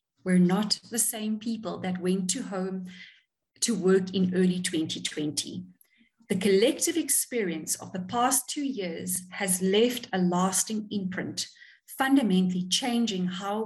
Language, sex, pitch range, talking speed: English, female, 180-230 Hz, 130 wpm